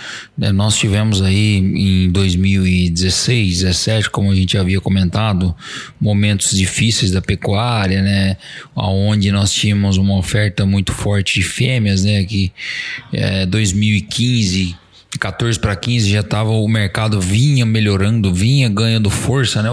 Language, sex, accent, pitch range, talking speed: Portuguese, male, Brazilian, 100-140 Hz, 130 wpm